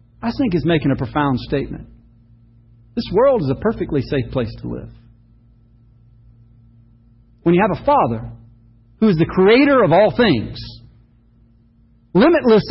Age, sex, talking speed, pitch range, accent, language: 50-69, male, 135 wpm, 115-195 Hz, American, English